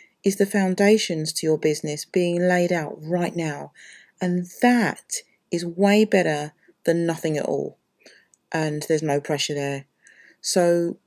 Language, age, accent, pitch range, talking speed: English, 40-59, British, 150-200 Hz, 140 wpm